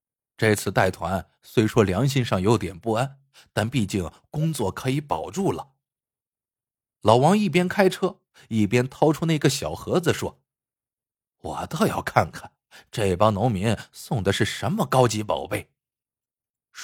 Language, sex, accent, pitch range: Chinese, male, native, 110-150 Hz